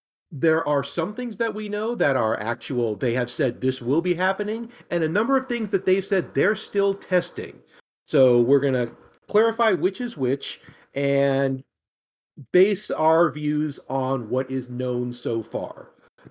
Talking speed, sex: 175 wpm, male